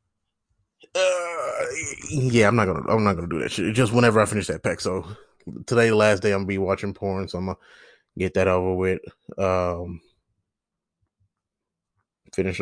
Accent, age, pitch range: American, 20-39, 95-115 Hz